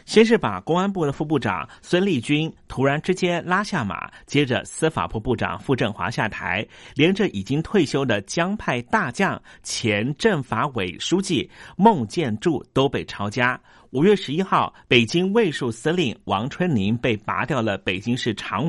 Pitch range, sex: 110-165 Hz, male